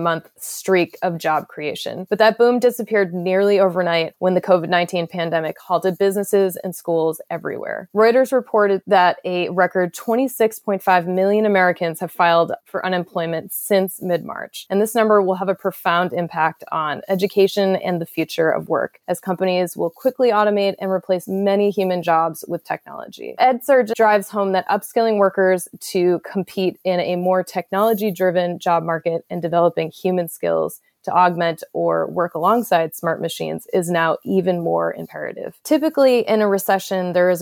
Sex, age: female, 20-39